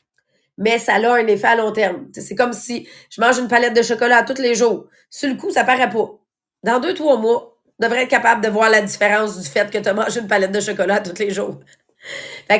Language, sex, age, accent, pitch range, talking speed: English, female, 30-49, Canadian, 210-265 Hz, 250 wpm